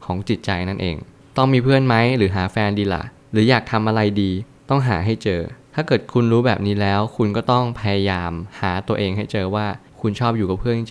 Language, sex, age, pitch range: Thai, male, 20-39, 100-120 Hz